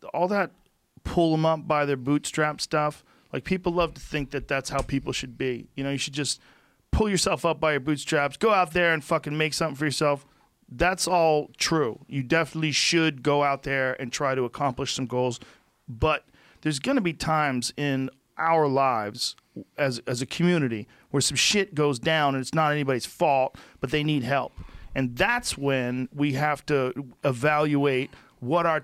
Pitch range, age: 135-170 Hz, 40-59